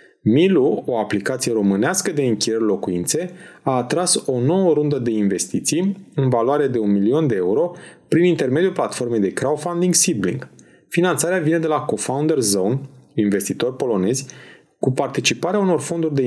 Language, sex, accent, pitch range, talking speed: Romanian, male, native, 115-170 Hz, 150 wpm